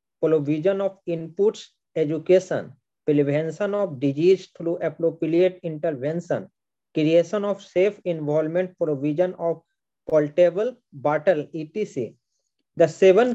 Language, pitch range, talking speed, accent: English, 155-190 Hz, 95 wpm, Indian